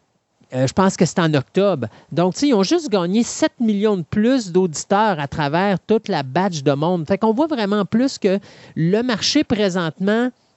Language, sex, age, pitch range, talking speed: French, male, 40-59, 165-230 Hz, 185 wpm